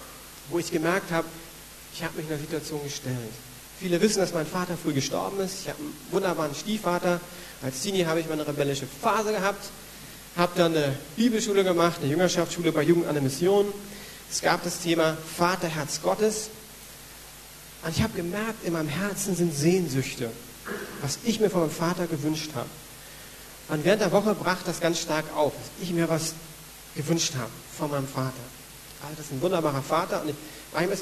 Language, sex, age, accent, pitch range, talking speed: German, male, 40-59, German, 145-185 Hz, 185 wpm